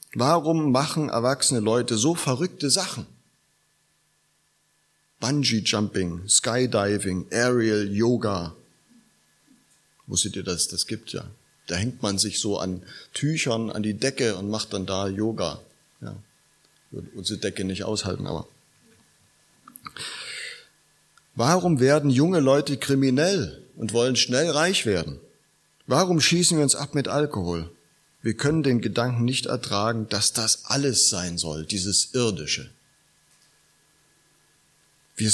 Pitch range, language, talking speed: 100-140 Hz, German, 115 wpm